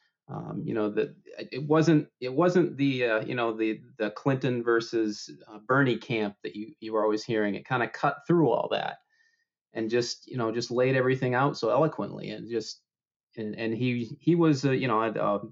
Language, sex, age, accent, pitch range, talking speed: English, male, 30-49, American, 110-135 Hz, 210 wpm